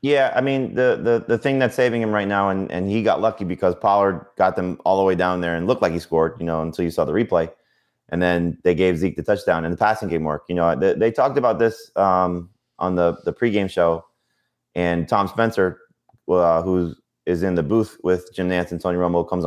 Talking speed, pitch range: 245 wpm, 85-100 Hz